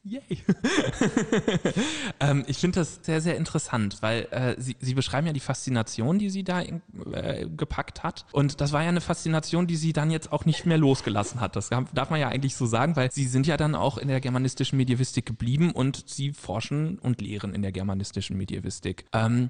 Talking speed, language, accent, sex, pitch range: 205 wpm, German, German, male, 115-160 Hz